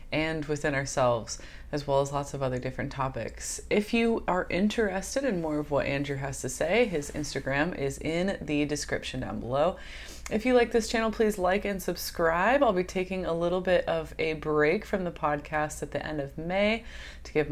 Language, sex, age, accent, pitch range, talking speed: English, female, 20-39, American, 140-175 Hz, 200 wpm